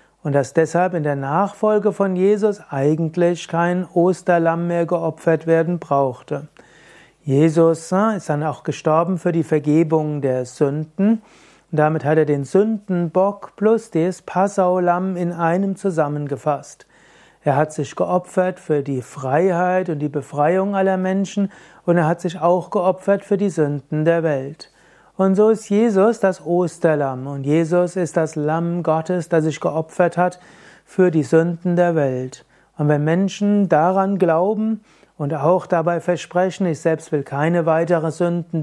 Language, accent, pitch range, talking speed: German, German, 150-180 Hz, 150 wpm